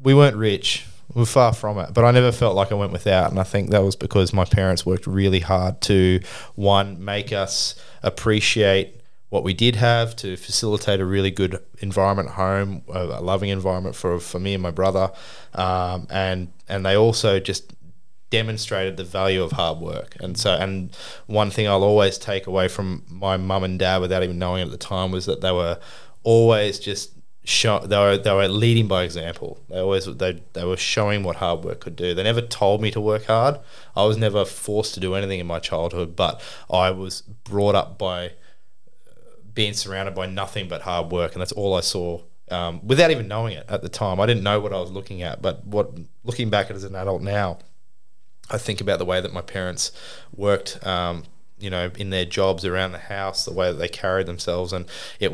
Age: 20-39